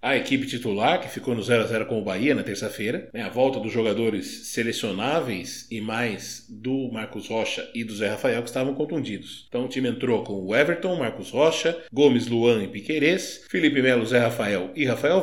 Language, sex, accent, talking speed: Portuguese, male, Brazilian, 195 wpm